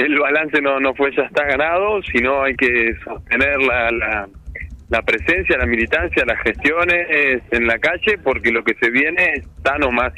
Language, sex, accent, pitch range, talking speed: Spanish, male, Argentinian, 110-145 Hz, 190 wpm